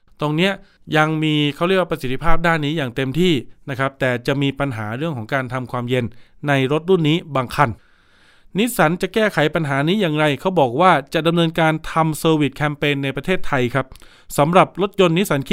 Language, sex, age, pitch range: Thai, male, 20-39, 135-175 Hz